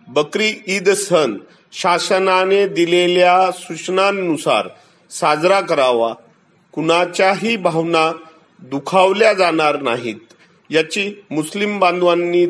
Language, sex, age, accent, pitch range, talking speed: Marathi, male, 50-69, native, 160-195 Hz, 75 wpm